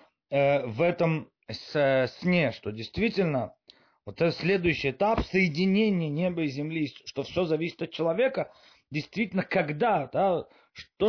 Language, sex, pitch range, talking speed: Russian, male, 130-180 Hz, 120 wpm